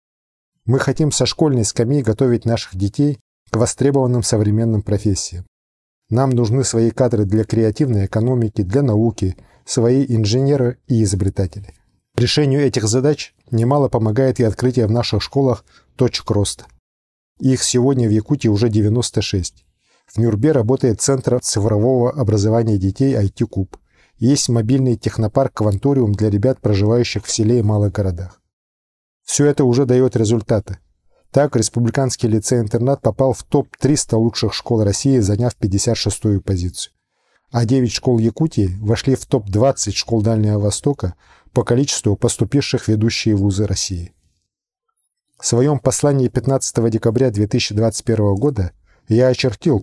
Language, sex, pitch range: Russian, male, 105-130 Hz